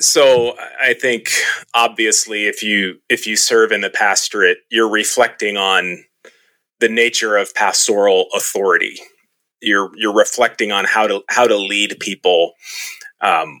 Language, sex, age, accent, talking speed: English, male, 30-49, American, 135 wpm